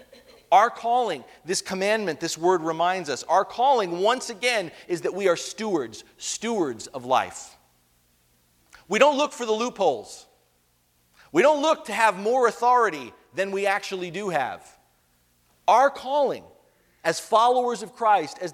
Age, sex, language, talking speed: 40-59, male, English, 145 wpm